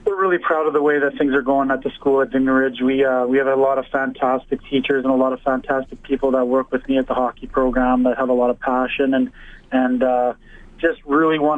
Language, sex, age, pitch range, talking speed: English, male, 20-39, 130-140 Hz, 265 wpm